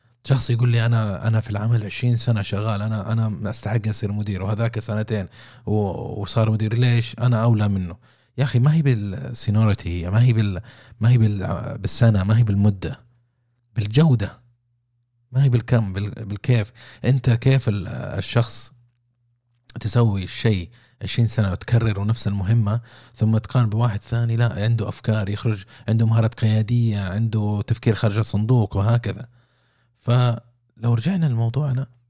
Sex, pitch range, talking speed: male, 100-120 Hz, 135 wpm